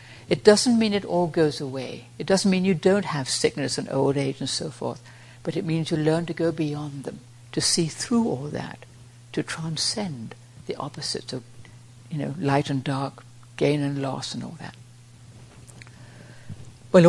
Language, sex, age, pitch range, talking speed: English, female, 60-79, 120-175 Hz, 180 wpm